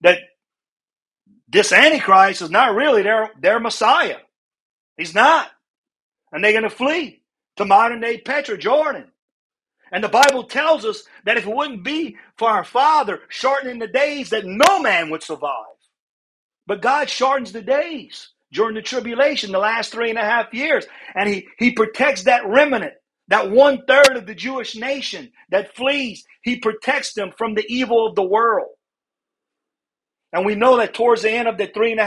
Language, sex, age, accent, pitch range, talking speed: English, male, 50-69, American, 195-270 Hz, 170 wpm